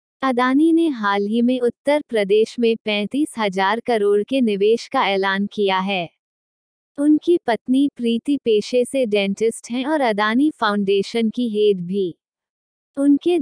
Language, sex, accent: Hindi, female, native